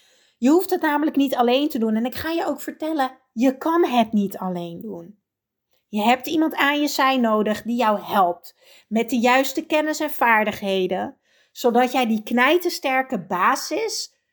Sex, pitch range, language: female, 215-310 Hz, Dutch